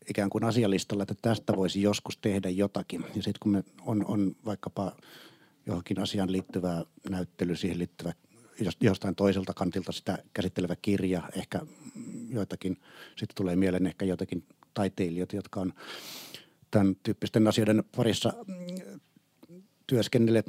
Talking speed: 125 wpm